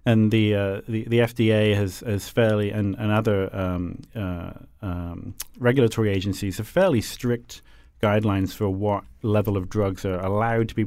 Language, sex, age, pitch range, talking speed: English, male, 30-49, 95-110 Hz, 165 wpm